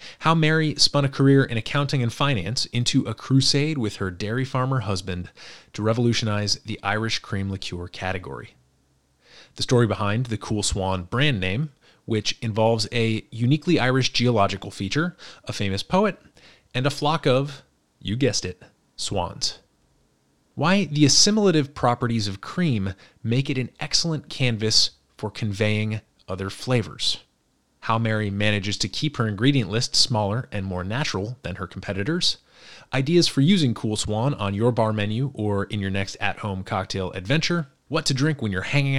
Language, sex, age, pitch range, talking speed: English, male, 30-49, 100-135 Hz, 155 wpm